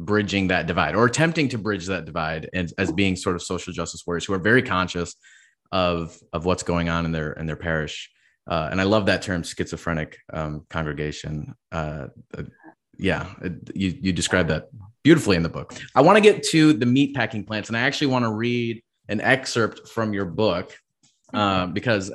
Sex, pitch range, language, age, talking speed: male, 90-120 Hz, English, 20-39, 200 wpm